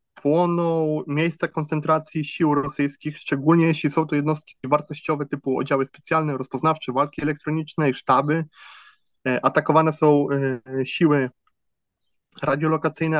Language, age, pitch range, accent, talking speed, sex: Polish, 20-39, 140-160 Hz, native, 100 wpm, male